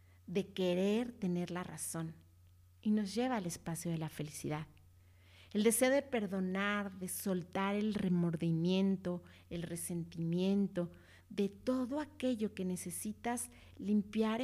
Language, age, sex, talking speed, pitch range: Spanish, 40-59, female, 120 wpm, 160-205 Hz